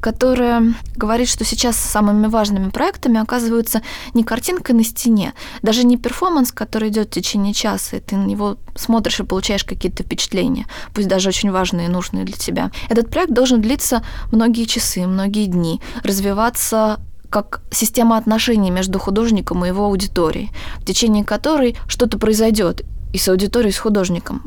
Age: 20-39